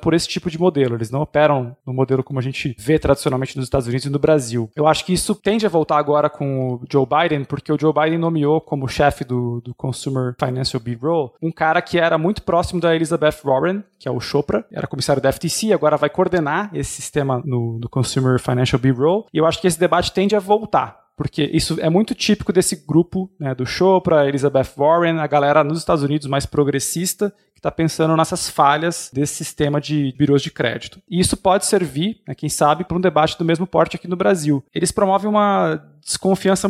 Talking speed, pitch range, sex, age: 215 wpm, 135-175 Hz, male, 20-39